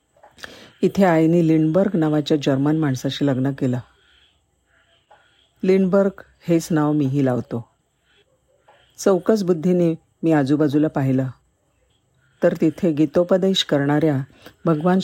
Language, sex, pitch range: Marathi, female, 140-185 Hz